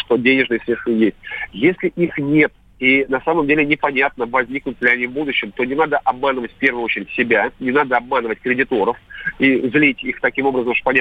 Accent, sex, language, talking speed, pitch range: native, male, Russian, 195 wpm, 120-150 Hz